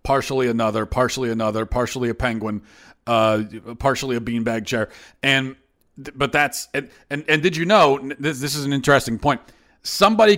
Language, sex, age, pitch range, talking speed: English, male, 40-59, 120-165 Hz, 160 wpm